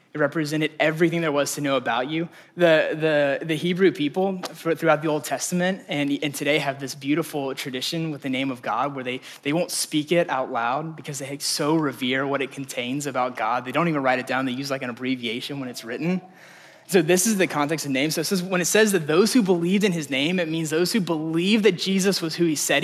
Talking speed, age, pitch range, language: 235 wpm, 20-39, 140-175 Hz, English